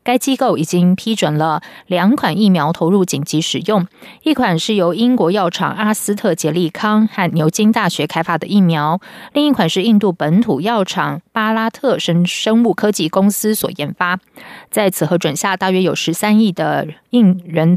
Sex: female